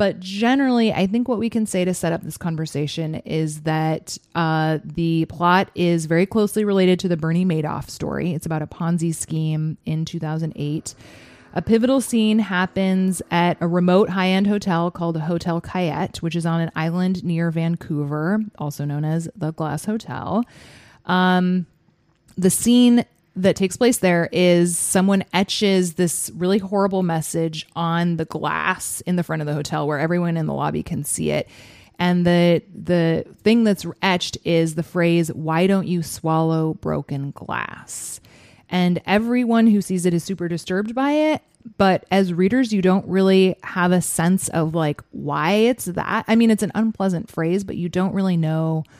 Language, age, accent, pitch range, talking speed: English, 20-39, American, 160-190 Hz, 175 wpm